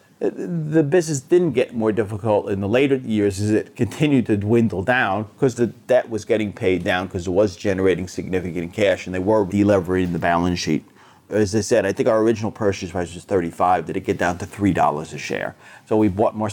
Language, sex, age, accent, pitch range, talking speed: English, male, 30-49, American, 95-120 Hz, 215 wpm